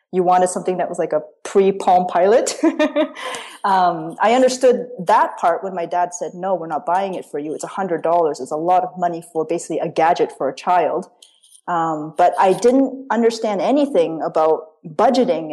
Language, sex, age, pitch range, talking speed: English, female, 20-39, 180-255 Hz, 190 wpm